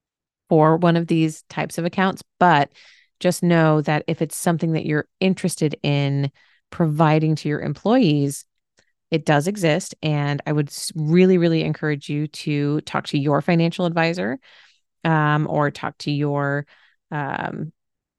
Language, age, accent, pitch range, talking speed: English, 30-49, American, 150-180 Hz, 145 wpm